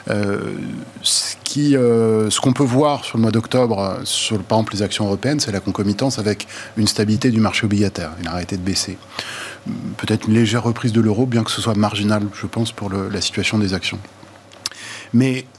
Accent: French